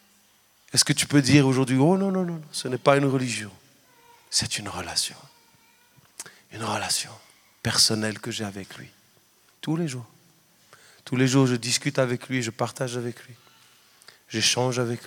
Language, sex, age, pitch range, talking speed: French, male, 40-59, 115-145 Hz, 165 wpm